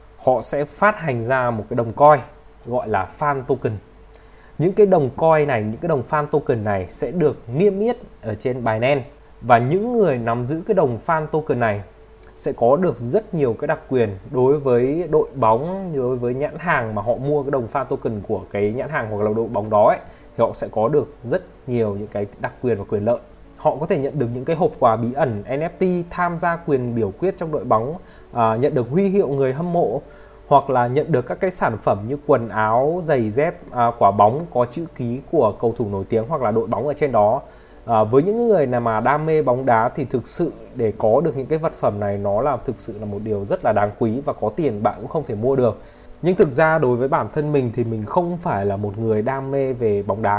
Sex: male